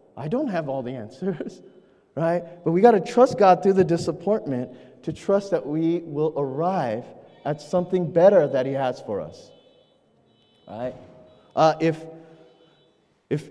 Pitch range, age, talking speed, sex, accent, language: 140-195 Hz, 20-39, 150 wpm, male, American, English